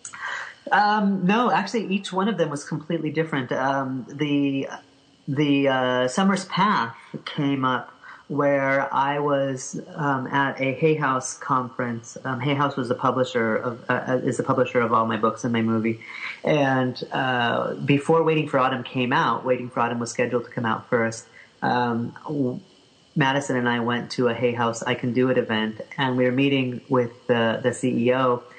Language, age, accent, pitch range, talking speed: English, 30-49, American, 120-140 Hz, 175 wpm